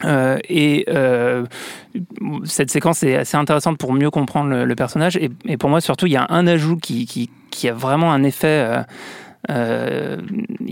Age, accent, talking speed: 30-49, French, 175 wpm